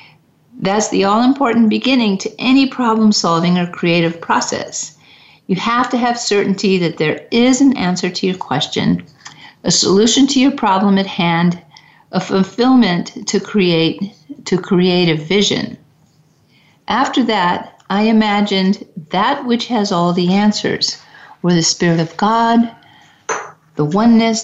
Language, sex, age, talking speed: English, female, 50-69, 135 wpm